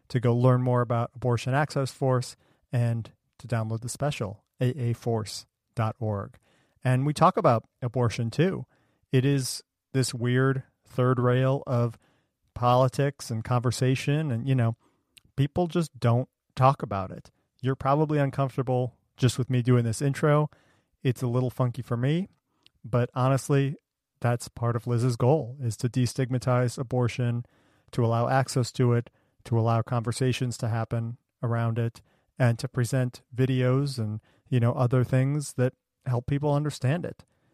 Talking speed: 145 wpm